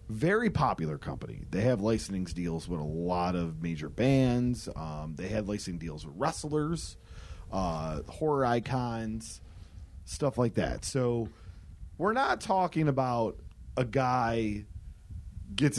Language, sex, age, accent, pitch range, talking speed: English, male, 30-49, American, 90-130 Hz, 130 wpm